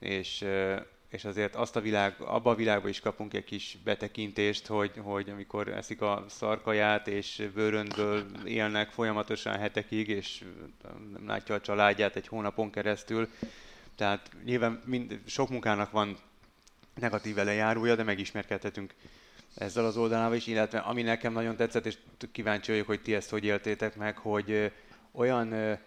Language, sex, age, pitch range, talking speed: Hungarian, male, 20-39, 105-115 Hz, 140 wpm